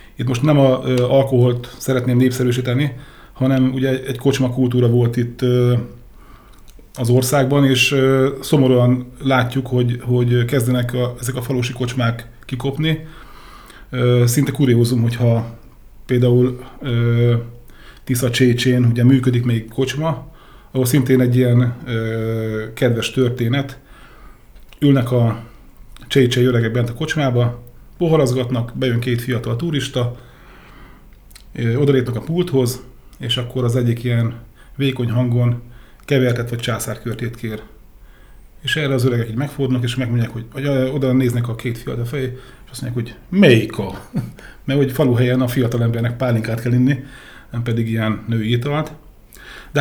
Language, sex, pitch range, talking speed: Hungarian, male, 120-130 Hz, 125 wpm